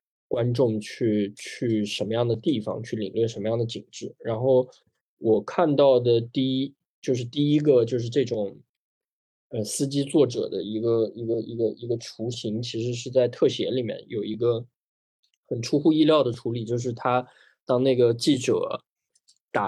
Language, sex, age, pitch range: Chinese, male, 20-39, 110-125 Hz